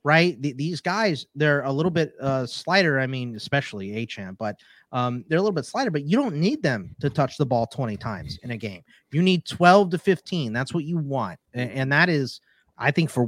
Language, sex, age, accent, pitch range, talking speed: English, male, 30-49, American, 115-150 Hz, 230 wpm